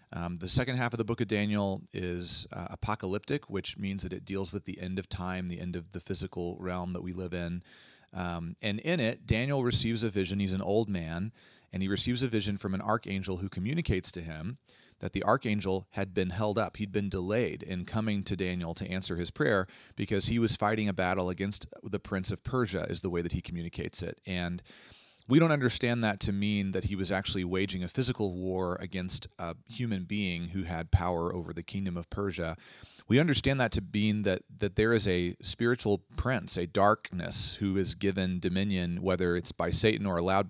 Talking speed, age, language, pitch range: 210 wpm, 30-49, English, 90-105 Hz